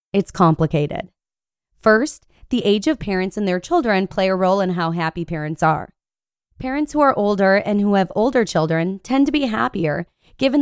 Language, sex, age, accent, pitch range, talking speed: English, female, 20-39, American, 175-230 Hz, 180 wpm